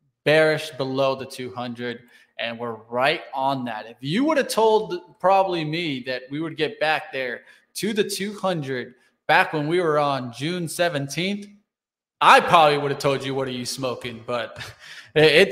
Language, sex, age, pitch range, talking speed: English, male, 20-39, 140-200 Hz, 170 wpm